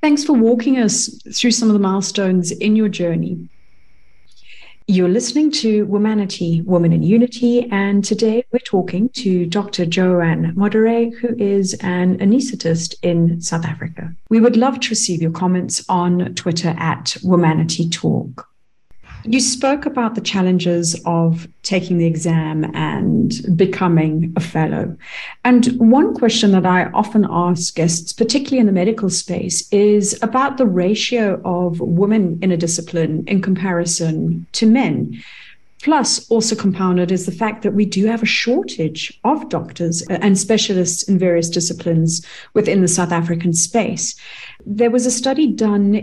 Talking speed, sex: 145 wpm, female